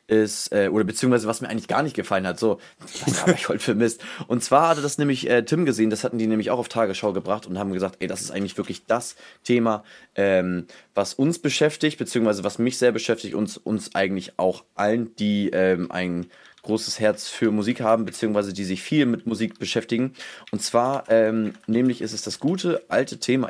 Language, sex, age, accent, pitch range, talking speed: German, male, 20-39, German, 105-130 Hz, 210 wpm